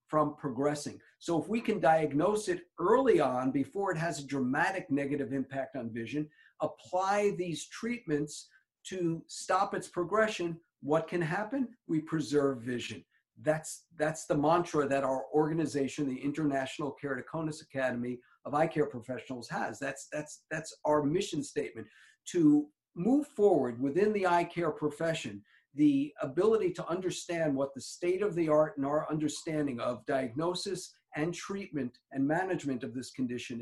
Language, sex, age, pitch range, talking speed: English, male, 50-69, 140-175 Hz, 150 wpm